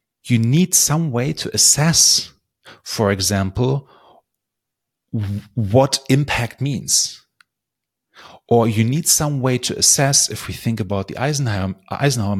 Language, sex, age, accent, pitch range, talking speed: English, male, 30-49, German, 100-130 Hz, 120 wpm